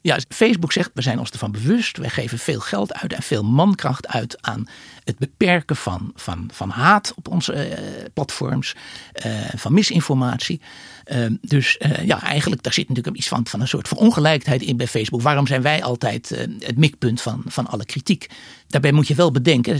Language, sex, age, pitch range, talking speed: Dutch, male, 60-79, 125-165 Hz, 195 wpm